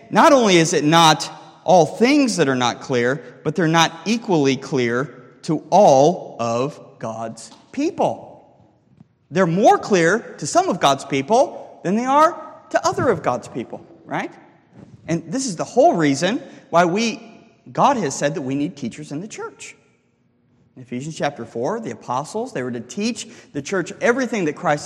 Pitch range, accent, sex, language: 135-225 Hz, American, male, English